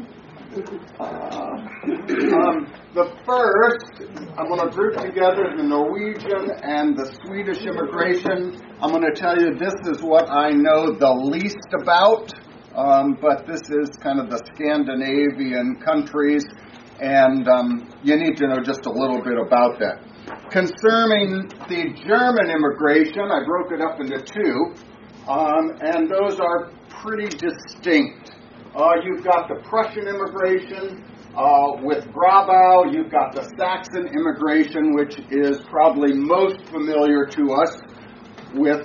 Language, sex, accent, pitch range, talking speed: English, male, American, 140-205 Hz, 135 wpm